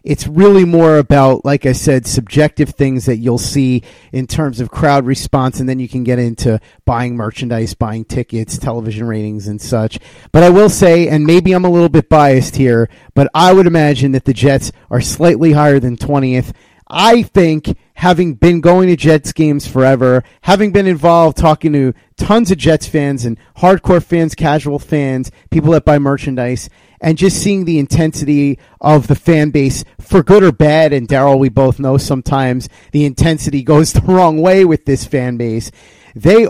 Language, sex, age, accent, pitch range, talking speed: English, male, 30-49, American, 125-160 Hz, 185 wpm